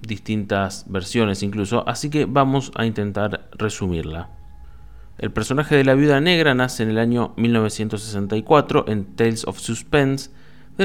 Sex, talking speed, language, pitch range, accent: male, 140 wpm, Spanish, 105-130 Hz, Argentinian